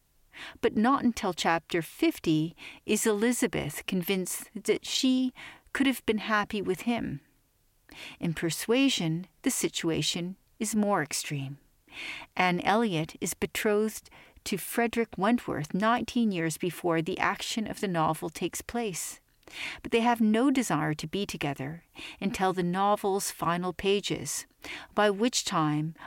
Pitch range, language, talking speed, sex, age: 160-225 Hz, English, 130 wpm, female, 40-59